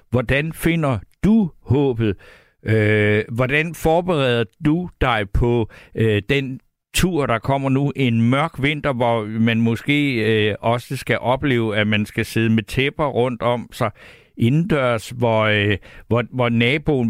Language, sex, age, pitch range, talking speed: Danish, male, 60-79, 115-145 Hz, 145 wpm